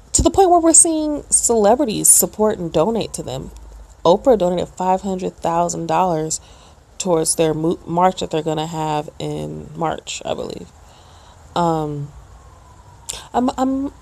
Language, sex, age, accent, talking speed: English, female, 30-49, American, 125 wpm